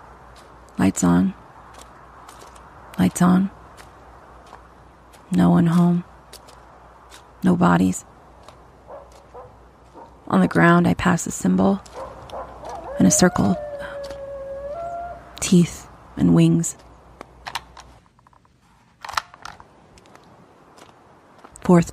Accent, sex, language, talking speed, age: American, female, English, 65 wpm, 30-49